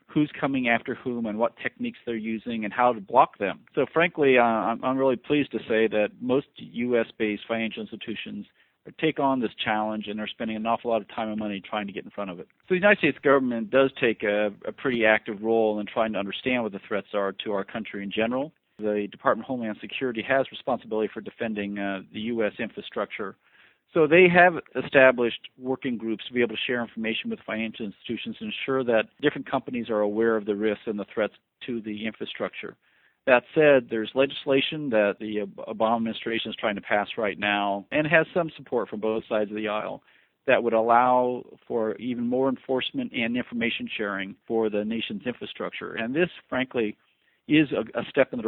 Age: 40-59